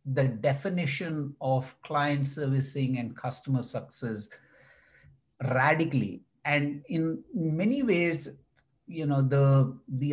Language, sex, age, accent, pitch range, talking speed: English, male, 50-69, Indian, 130-155 Hz, 100 wpm